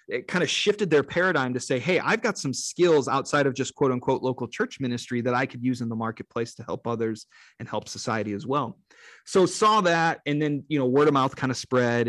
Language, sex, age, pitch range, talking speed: English, male, 30-49, 120-150 Hz, 245 wpm